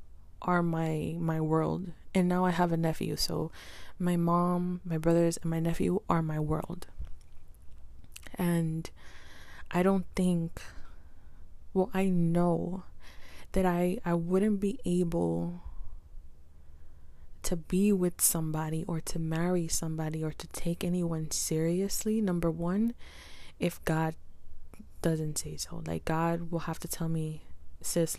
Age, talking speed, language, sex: 20-39, 130 wpm, English, female